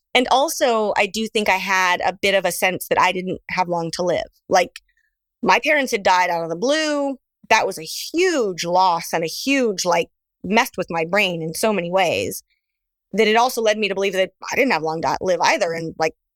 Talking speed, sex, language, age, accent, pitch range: 225 wpm, female, English, 30-49, American, 185-245 Hz